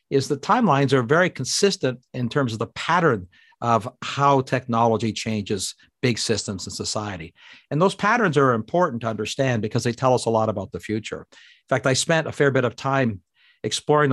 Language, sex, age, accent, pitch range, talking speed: English, male, 50-69, American, 110-145 Hz, 190 wpm